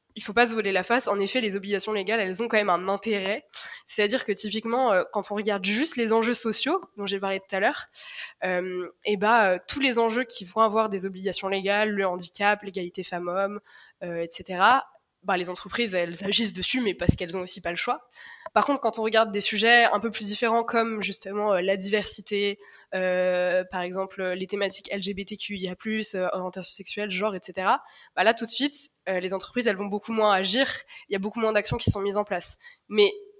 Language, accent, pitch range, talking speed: French, French, 195-230 Hz, 210 wpm